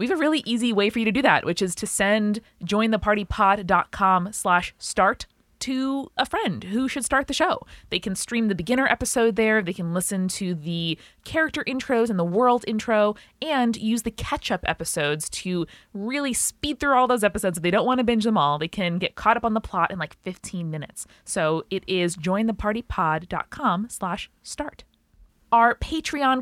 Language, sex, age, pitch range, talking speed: English, female, 20-39, 180-230 Hz, 190 wpm